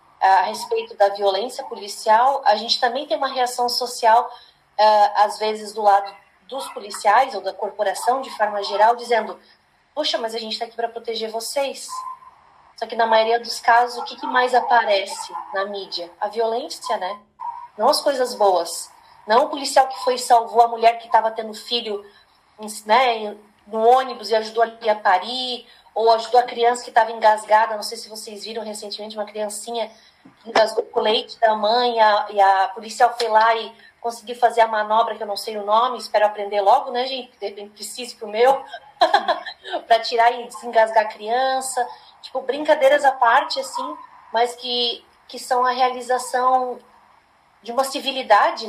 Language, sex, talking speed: Portuguese, female, 175 wpm